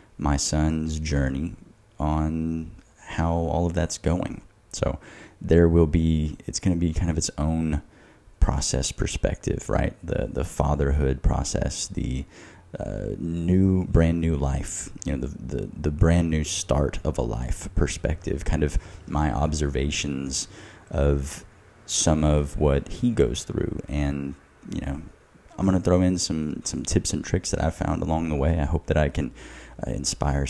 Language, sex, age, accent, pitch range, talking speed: English, male, 20-39, American, 70-85 Hz, 175 wpm